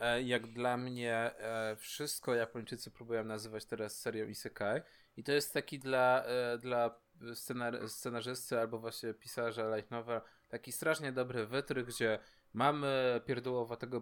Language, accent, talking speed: Polish, native, 130 wpm